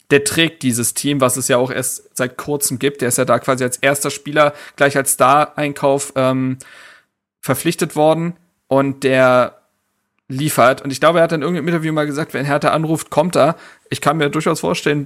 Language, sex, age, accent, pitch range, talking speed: German, male, 40-59, German, 135-160 Hz, 195 wpm